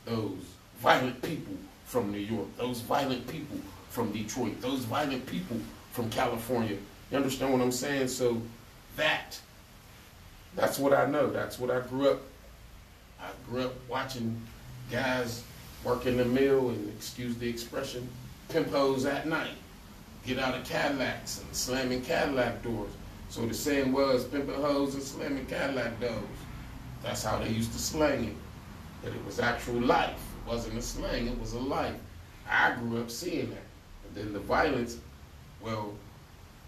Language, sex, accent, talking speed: English, male, American, 160 wpm